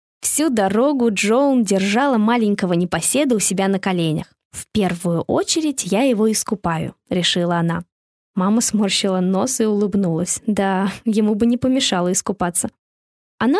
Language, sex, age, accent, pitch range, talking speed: Russian, female, 20-39, native, 190-265 Hz, 135 wpm